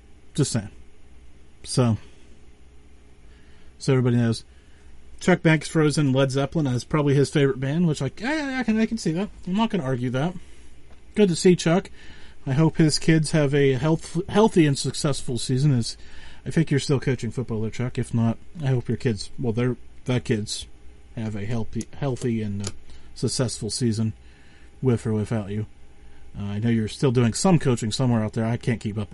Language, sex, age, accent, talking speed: English, male, 40-59, American, 185 wpm